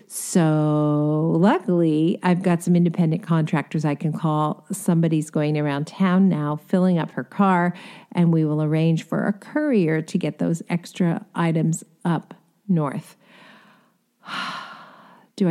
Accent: American